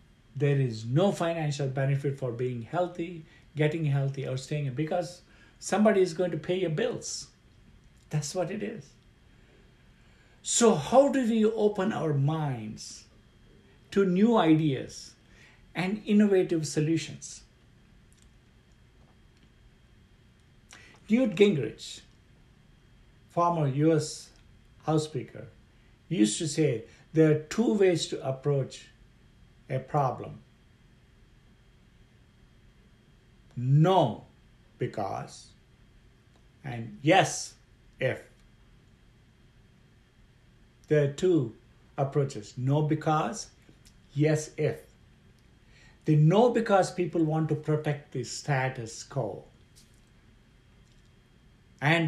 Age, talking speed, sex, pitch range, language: 60-79, 90 wpm, male, 120-165 Hz, English